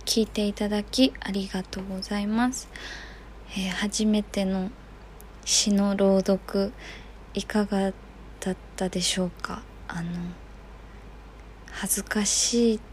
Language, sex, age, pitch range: Japanese, female, 20-39, 180-210 Hz